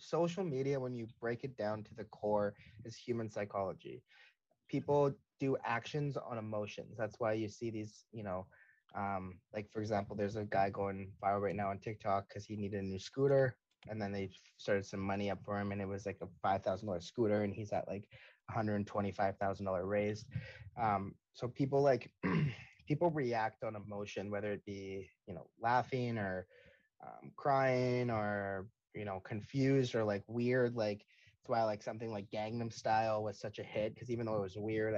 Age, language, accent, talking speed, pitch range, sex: 20-39, English, American, 195 wpm, 100-120 Hz, male